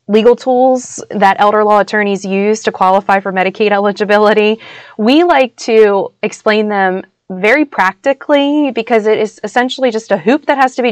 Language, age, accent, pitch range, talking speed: English, 20-39, American, 185-220 Hz, 165 wpm